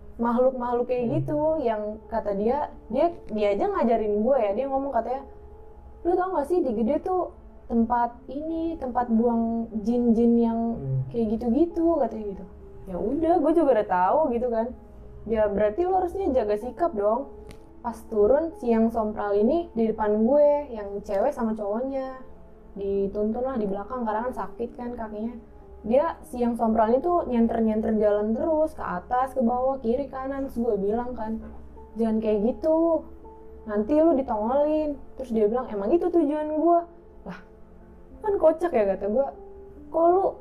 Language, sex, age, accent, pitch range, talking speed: Indonesian, female, 20-39, native, 215-290 Hz, 155 wpm